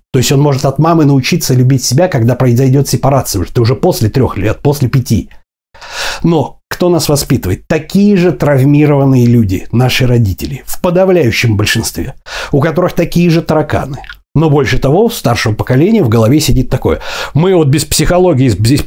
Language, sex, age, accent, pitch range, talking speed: Russian, male, 60-79, native, 120-160 Hz, 160 wpm